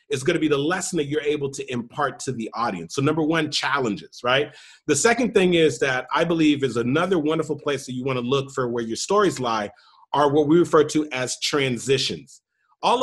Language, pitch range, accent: English, 145-185 Hz, American